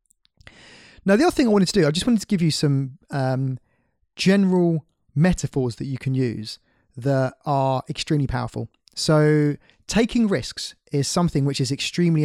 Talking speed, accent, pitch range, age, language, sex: 165 wpm, British, 125-160 Hz, 20-39, English, male